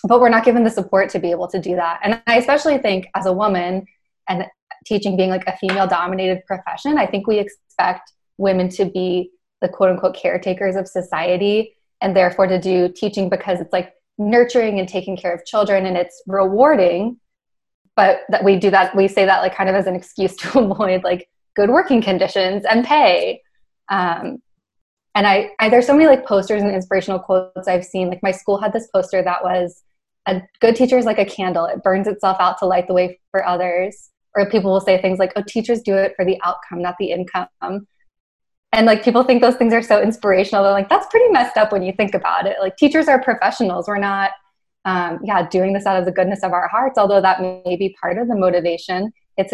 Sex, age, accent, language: female, 20-39, American, English